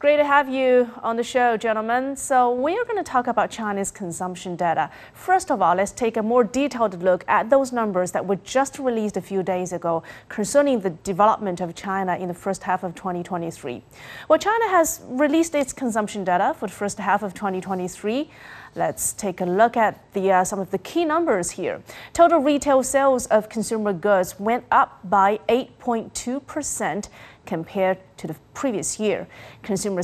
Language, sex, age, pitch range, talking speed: English, female, 30-49, 190-255 Hz, 180 wpm